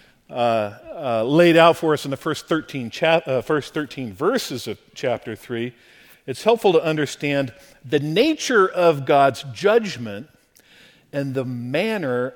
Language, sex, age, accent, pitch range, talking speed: English, male, 50-69, American, 130-175 Hz, 135 wpm